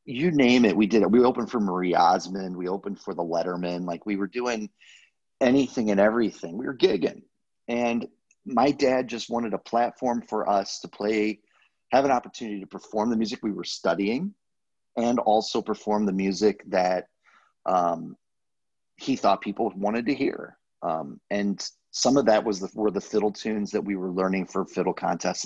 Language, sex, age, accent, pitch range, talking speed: English, male, 30-49, American, 90-110 Hz, 185 wpm